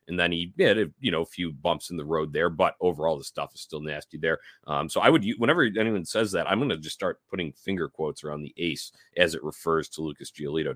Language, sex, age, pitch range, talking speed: English, male, 30-49, 85-110 Hz, 255 wpm